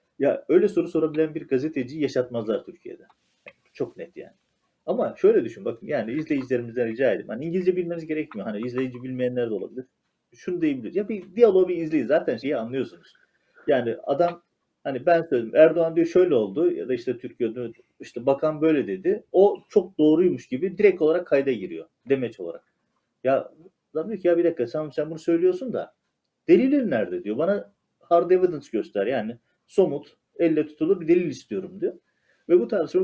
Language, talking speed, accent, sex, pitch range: Turkish, 170 wpm, native, male, 120-180 Hz